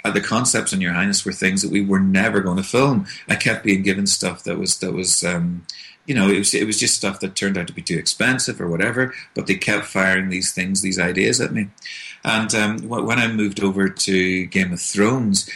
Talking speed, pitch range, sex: 235 wpm, 95-115 Hz, male